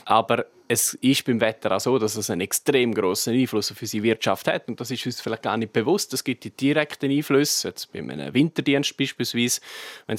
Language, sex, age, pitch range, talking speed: German, male, 20-39, 110-130 Hz, 210 wpm